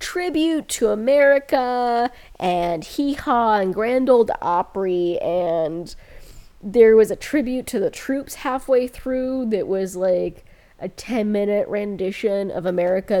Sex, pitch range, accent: female, 185-235 Hz, American